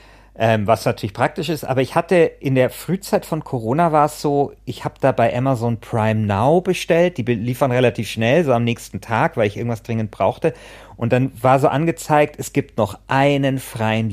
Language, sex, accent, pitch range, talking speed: German, male, German, 115-155 Hz, 200 wpm